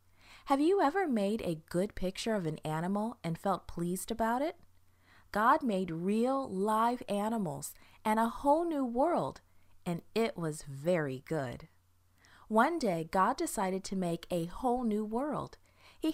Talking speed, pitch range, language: 155 wpm, 160-230 Hz, English